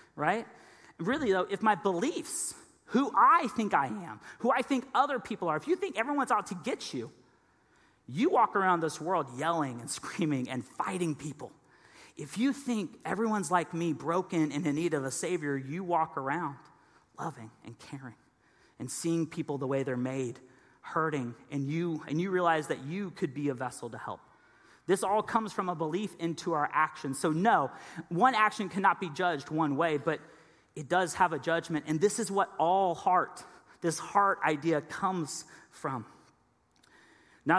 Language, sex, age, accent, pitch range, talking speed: English, male, 30-49, American, 155-205 Hz, 180 wpm